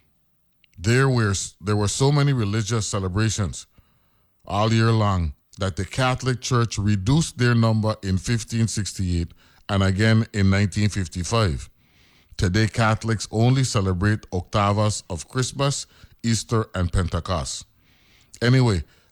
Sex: male